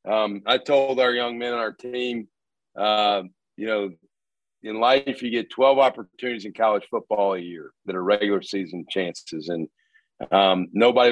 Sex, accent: male, American